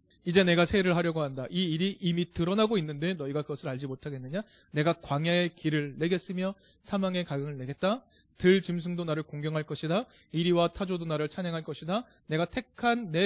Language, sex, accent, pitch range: Korean, male, native, 140-195 Hz